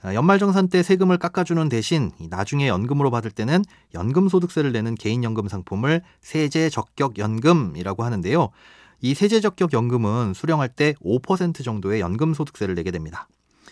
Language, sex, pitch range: Korean, male, 110-165 Hz